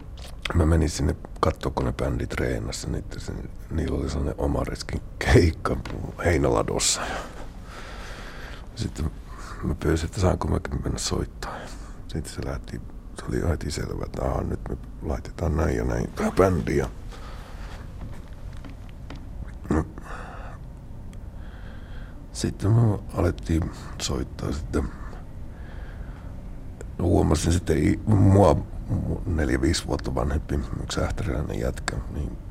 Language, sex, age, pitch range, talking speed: Finnish, male, 60-79, 75-95 Hz, 100 wpm